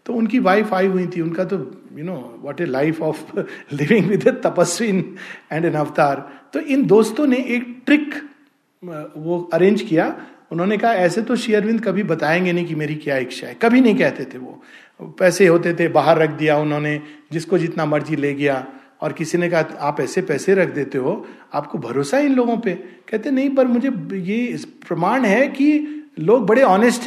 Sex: male